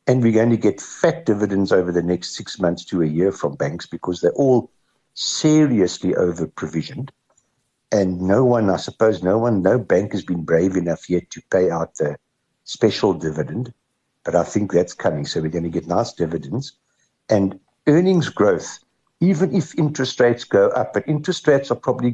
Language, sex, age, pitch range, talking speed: English, male, 60-79, 90-125 Hz, 185 wpm